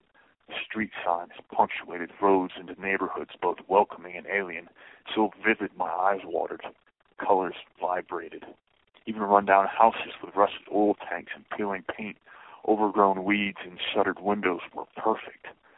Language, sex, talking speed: English, male, 130 wpm